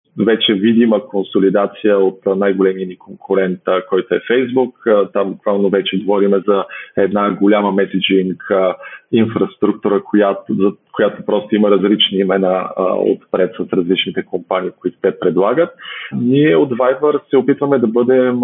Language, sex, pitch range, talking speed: Bulgarian, male, 95-115 Hz, 130 wpm